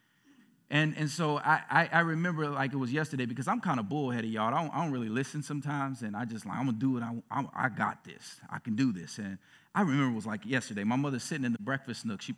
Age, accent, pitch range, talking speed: 40-59, American, 120-180 Hz, 270 wpm